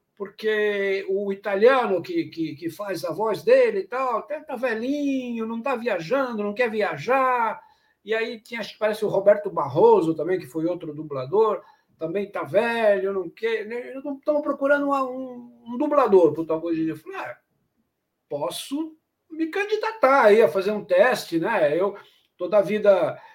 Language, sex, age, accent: Portuguese, male, 60-79, Brazilian